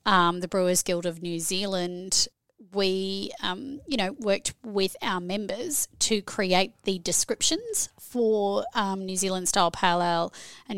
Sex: female